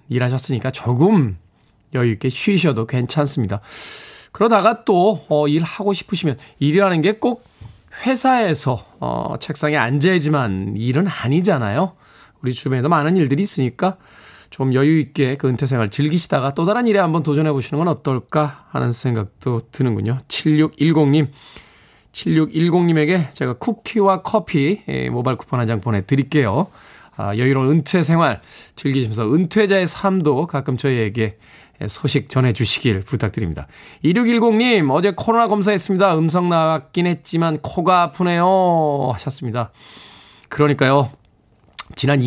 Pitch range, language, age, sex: 125-175 Hz, Korean, 20-39, male